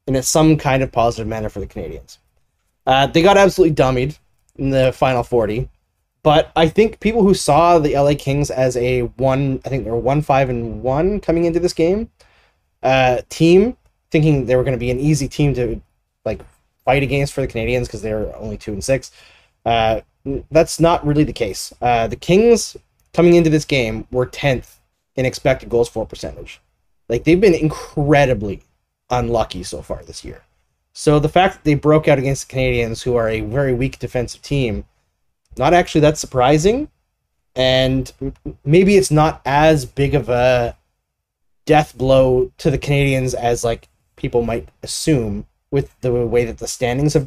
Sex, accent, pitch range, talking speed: male, American, 120-155 Hz, 180 wpm